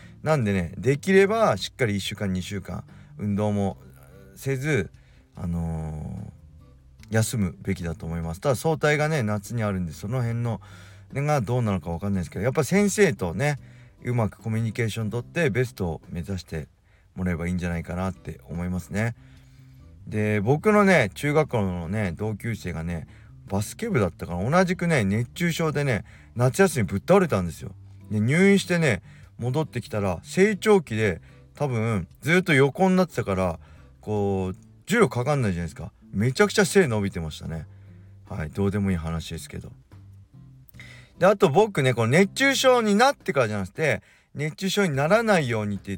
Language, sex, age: Japanese, male, 40-59